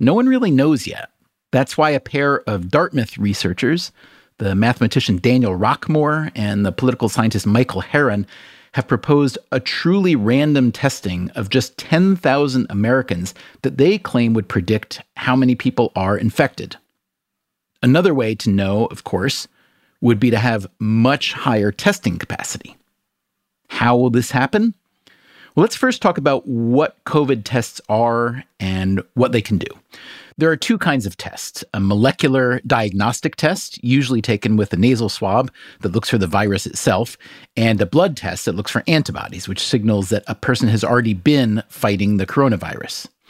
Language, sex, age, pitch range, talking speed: English, male, 40-59, 105-135 Hz, 160 wpm